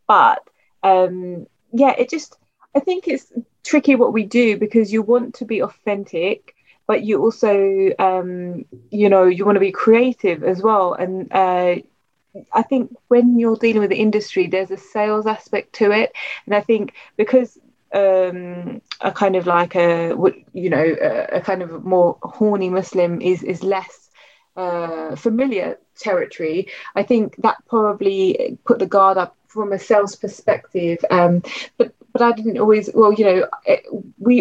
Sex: female